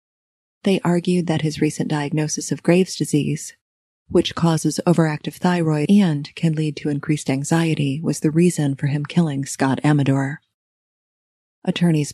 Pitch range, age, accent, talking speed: 150-180 Hz, 30-49, American, 140 wpm